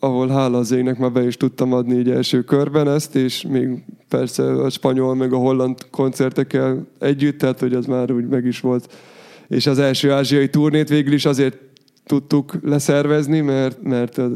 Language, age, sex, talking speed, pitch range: English, 20-39, male, 180 wpm, 130-150 Hz